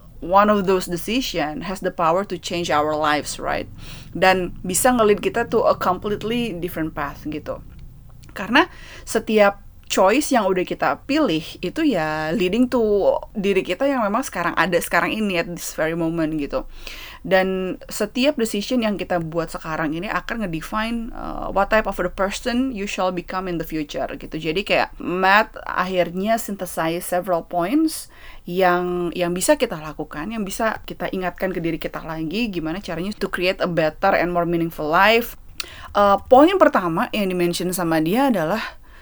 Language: Indonesian